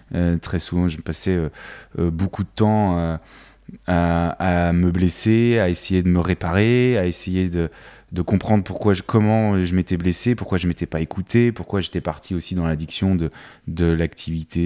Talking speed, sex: 190 wpm, male